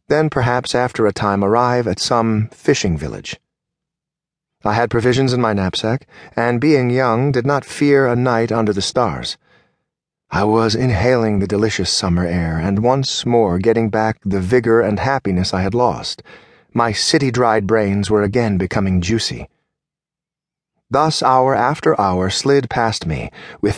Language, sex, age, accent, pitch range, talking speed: English, male, 40-59, American, 105-140 Hz, 155 wpm